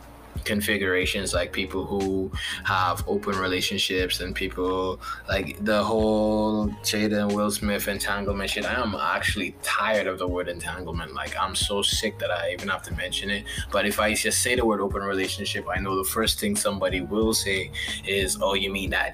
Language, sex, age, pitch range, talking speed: English, male, 20-39, 95-105 Hz, 180 wpm